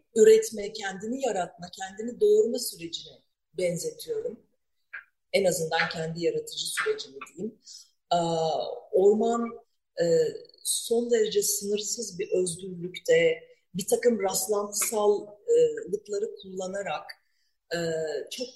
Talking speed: 80 wpm